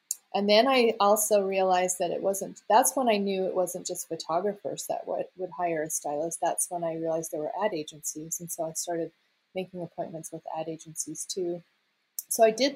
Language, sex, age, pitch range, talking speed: English, female, 30-49, 175-215 Hz, 200 wpm